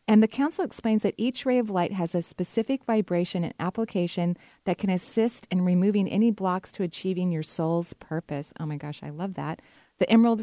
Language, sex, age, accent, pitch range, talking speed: English, female, 40-59, American, 165-205 Hz, 200 wpm